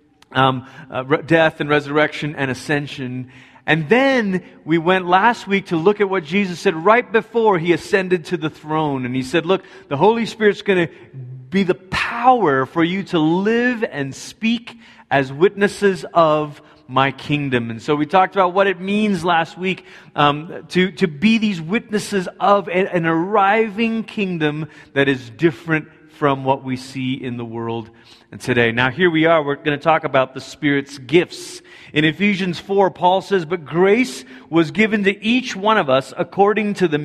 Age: 30-49